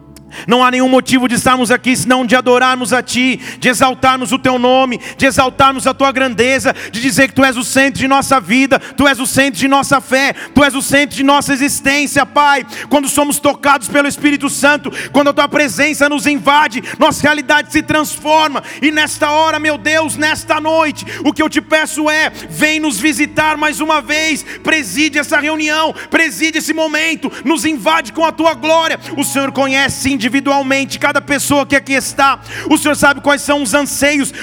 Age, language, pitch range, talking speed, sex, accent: 40-59, Portuguese, 270-305 Hz, 195 wpm, male, Brazilian